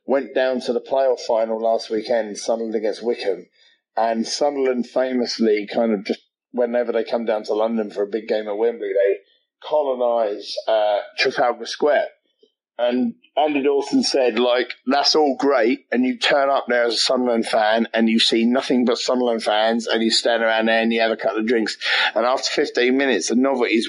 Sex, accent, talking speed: male, British, 190 wpm